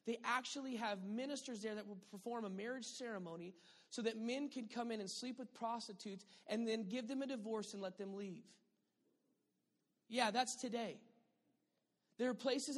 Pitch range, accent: 200-245 Hz, American